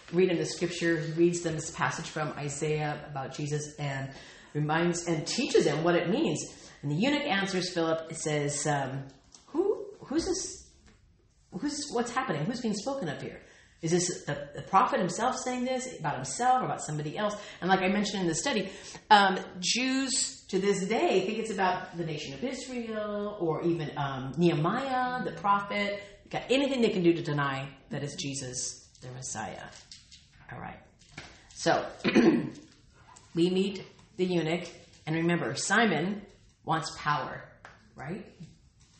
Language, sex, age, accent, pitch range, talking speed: English, female, 40-59, American, 150-205 Hz, 155 wpm